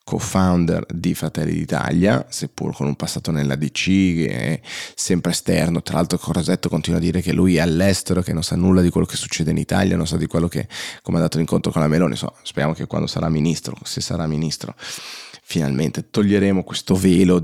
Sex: male